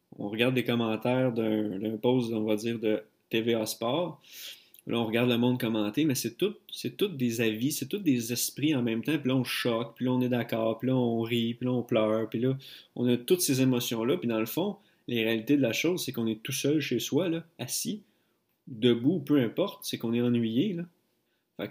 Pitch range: 115-135 Hz